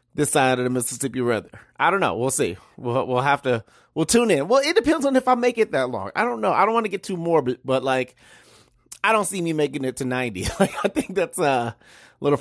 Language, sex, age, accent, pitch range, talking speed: English, male, 30-49, American, 125-180 Hz, 265 wpm